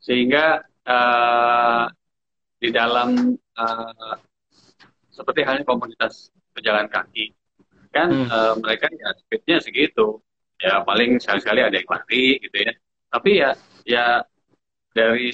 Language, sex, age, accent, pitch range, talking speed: Indonesian, male, 30-49, native, 110-150 Hz, 110 wpm